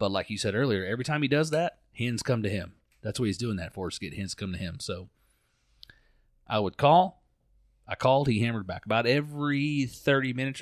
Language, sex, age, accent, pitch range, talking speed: English, male, 40-59, American, 95-120 Hz, 225 wpm